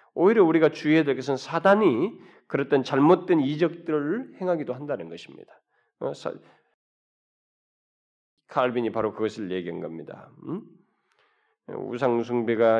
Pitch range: 115-145 Hz